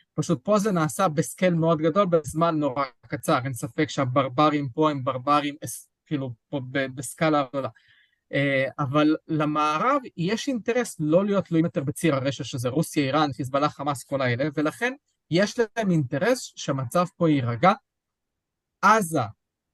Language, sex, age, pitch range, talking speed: Hebrew, male, 20-39, 140-180 Hz, 145 wpm